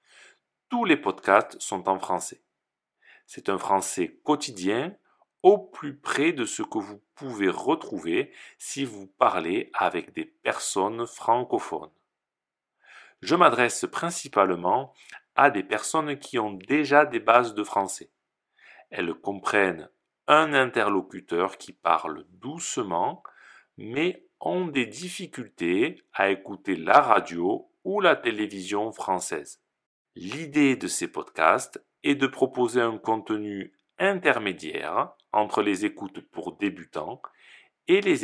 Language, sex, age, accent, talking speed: French, male, 40-59, French, 120 wpm